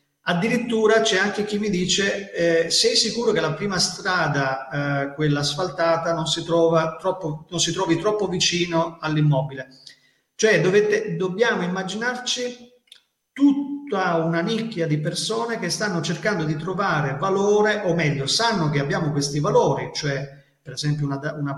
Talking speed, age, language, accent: 145 wpm, 40-59, Italian, native